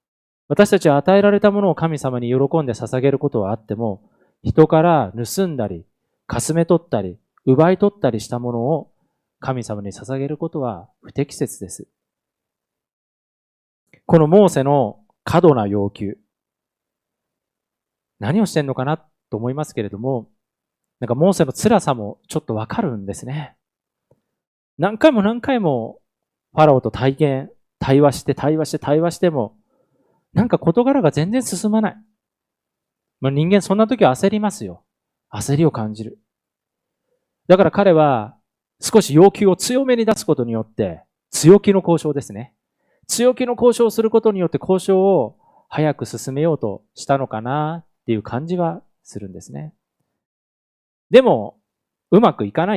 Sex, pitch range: male, 120-185 Hz